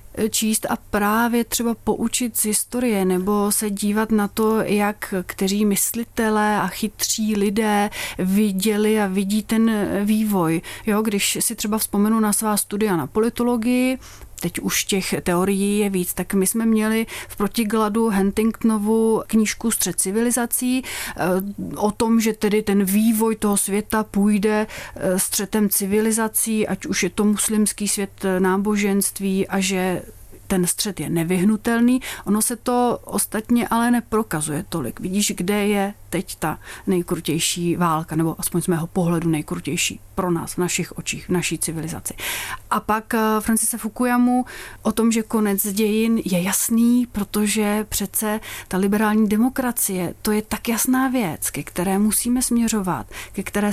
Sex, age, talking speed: female, 30-49, 145 wpm